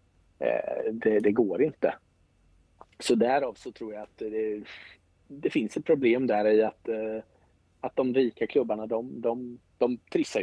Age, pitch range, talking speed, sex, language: 30-49, 100-125 Hz, 150 wpm, male, Swedish